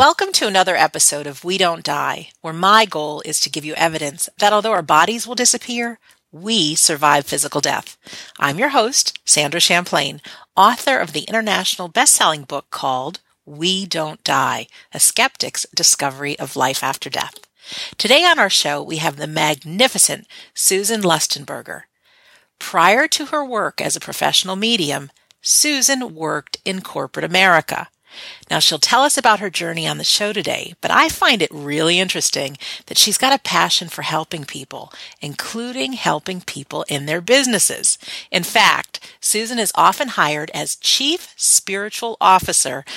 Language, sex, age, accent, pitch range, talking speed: English, female, 40-59, American, 155-225 Hz, 155 wpm